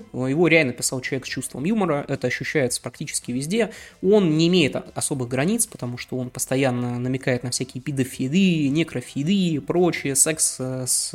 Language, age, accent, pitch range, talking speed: Russian, 20-39, native, 130-180 Hz, 155 wpm